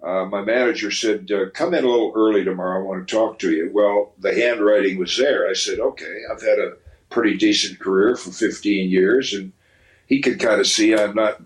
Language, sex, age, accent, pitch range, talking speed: English, male, 60-79, American, 100-130 Hz, 220 wpm